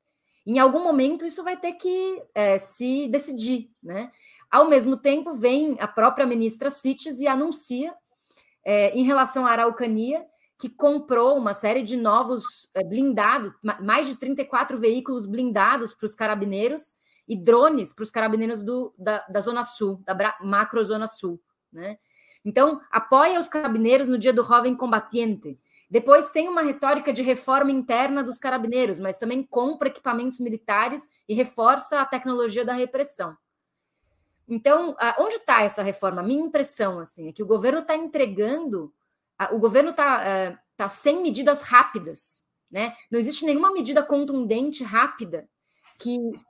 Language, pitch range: Portuguese, 220-280 Hz